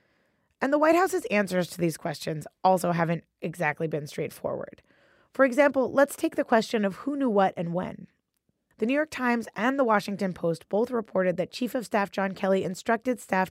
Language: English